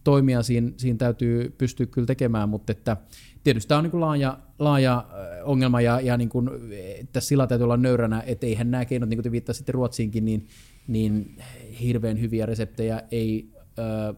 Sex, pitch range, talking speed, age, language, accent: male, 100-125 Hz, 165 wpm, 30-49, Finnish, native